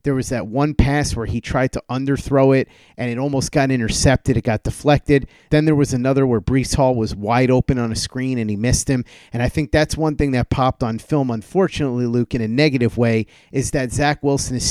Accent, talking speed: American, 235 wpm